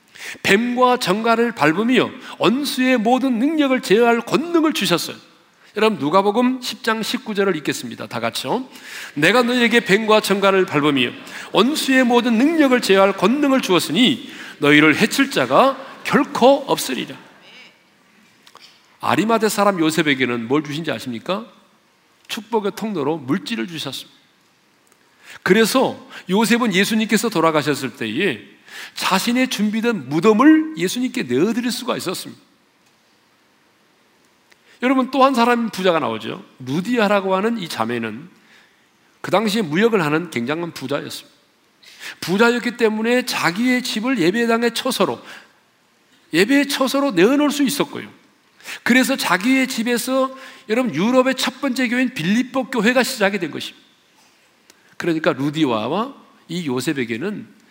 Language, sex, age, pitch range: Korean, male, 40-59, 180-255 Hz